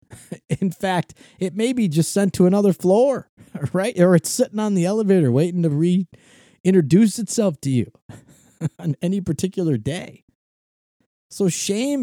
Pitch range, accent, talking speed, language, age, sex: 125-180 Hz, American, 145 wpm, English, 30-49, male